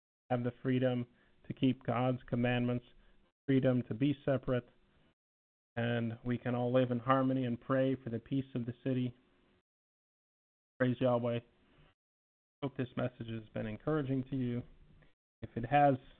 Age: 40-59